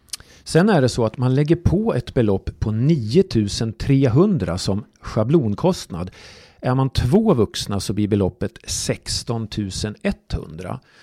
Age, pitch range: 40-59, 100-135 Hz